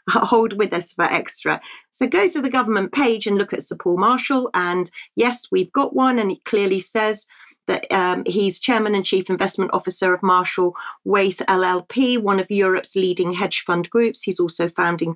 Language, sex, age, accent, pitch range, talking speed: English, female, 40-59, British, 180-235 Hz, 190 wpm